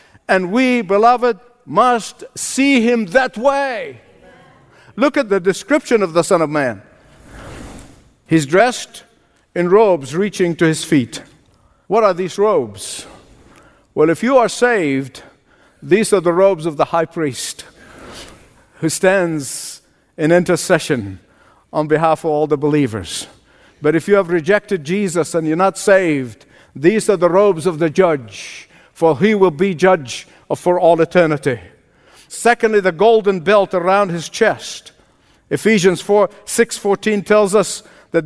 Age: 50-69